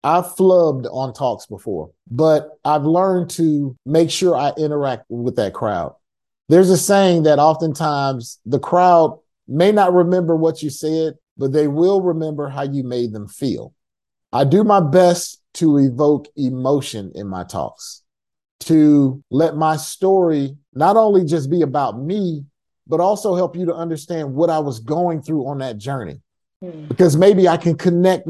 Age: 30-49